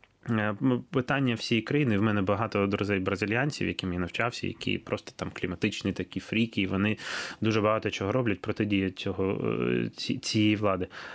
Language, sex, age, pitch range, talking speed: Ukrainian, male, 20-39, 105-135 Hz, 140 wpm